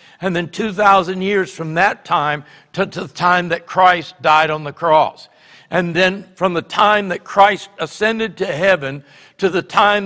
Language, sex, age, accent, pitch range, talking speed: English, male, 60-79, American, 155-195 Hz, 180 wpm